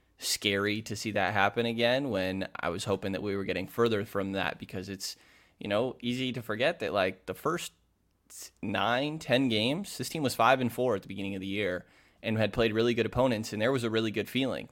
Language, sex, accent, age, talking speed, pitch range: English, male, American, 20-39, 230 wpm, 95-115 Hz